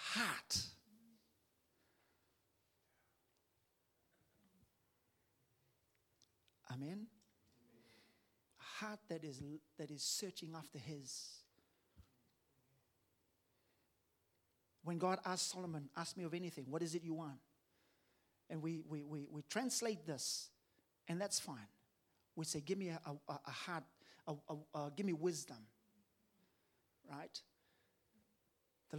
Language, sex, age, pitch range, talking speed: English, male, 50-69, 125-180 Hz, 105 wpm